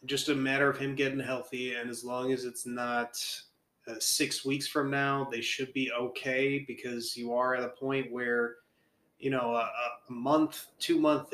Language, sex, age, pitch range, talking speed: English, male, 20-39, 125-140 Hz, 185 wpm